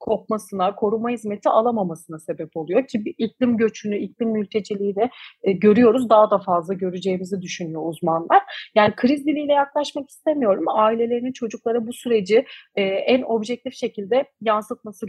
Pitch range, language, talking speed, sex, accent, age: 195-245 Hz, Turkish, 130 wpm, female, native, 30-49